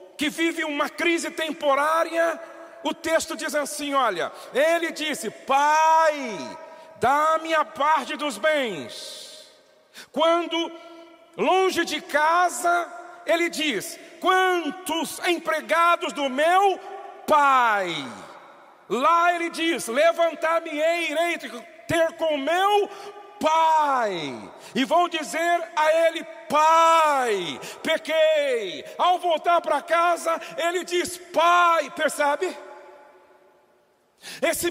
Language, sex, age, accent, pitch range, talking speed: Portuguese, male, 50-69, Brazilian, 305-345 Hz, 100 wpm